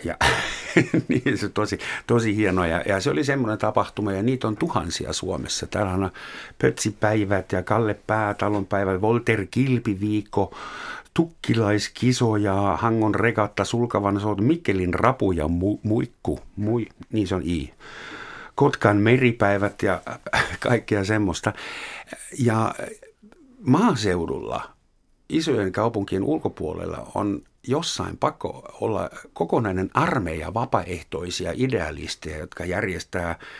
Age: 60-79